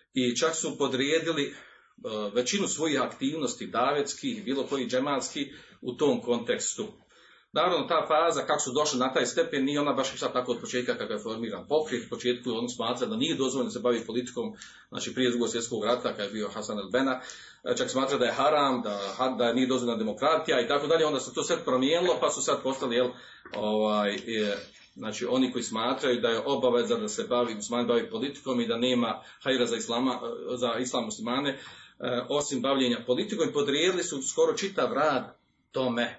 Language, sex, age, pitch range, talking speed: Croatian, male, 40-59, 120-165 Hz, 185 wpm